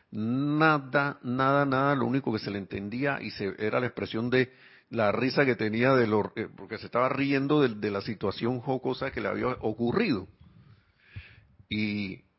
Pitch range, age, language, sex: 105-135 Hz, 50-69, Spanish, male